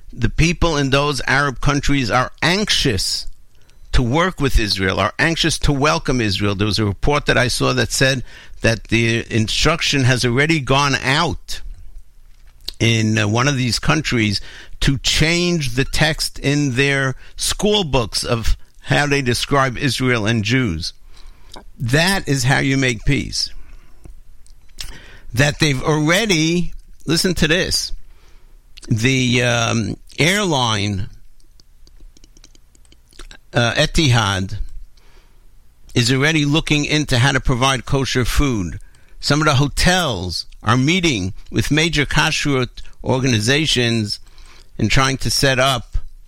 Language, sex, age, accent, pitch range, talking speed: English, male, 60-79, American, 100-145 Hz, 120 wpm